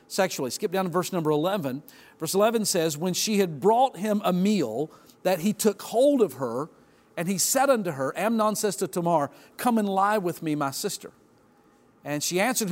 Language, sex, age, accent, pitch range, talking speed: English, male, 50-69, American, 165-220 Hz, 200 wpm